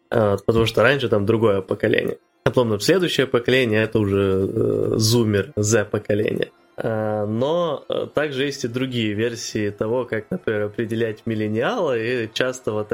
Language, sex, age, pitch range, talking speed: Ukrainian, male, 20-39, 110-125 Hz, 145 wpm